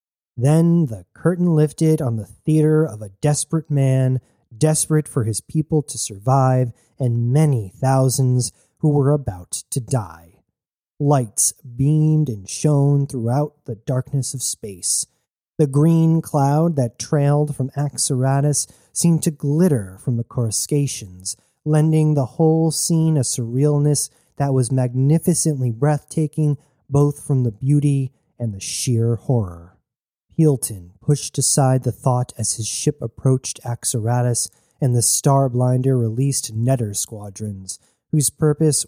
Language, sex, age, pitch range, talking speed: English, male, 30-49, 120-150 Hz, 130 wpm